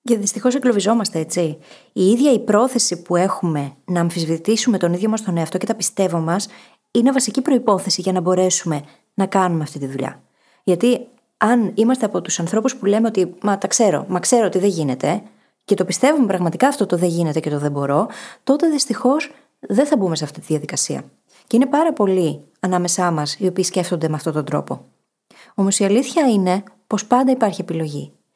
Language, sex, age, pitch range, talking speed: Greek, female, 20-39, 180-245 Hz, 195 wpm